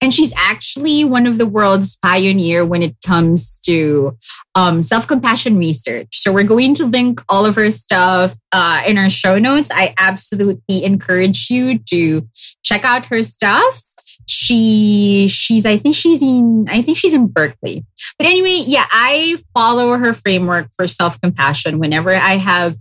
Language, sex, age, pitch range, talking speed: English, female, 20-39, 175-240 Hz, 165 wpm